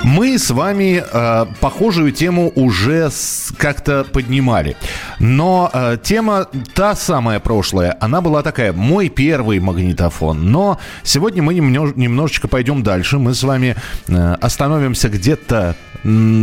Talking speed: 110 wpm